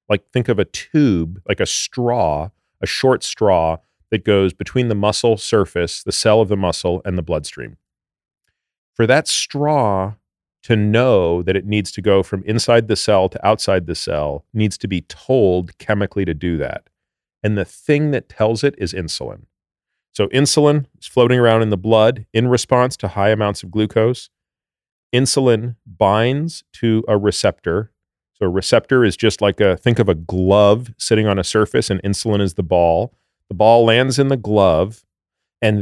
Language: English